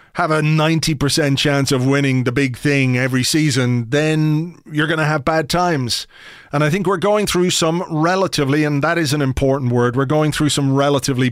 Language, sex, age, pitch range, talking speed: English, male, 30-49, 135-155 Hz, 195 wpm